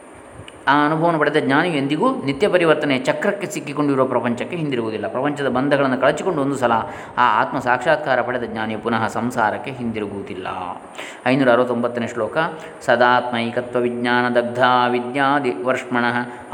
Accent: native